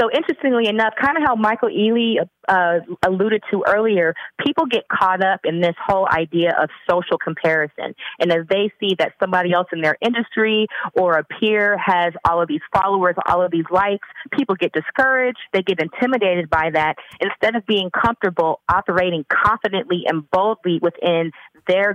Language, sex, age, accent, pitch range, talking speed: English, female, 30-49, American, 170-205 Hz, 170 wpm